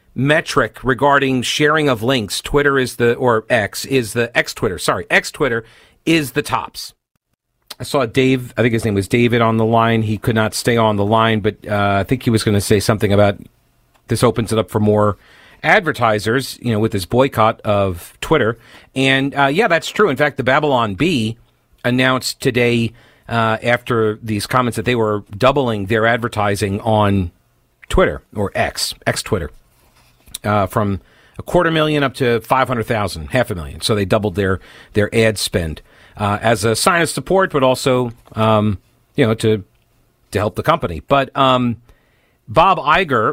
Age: 40-59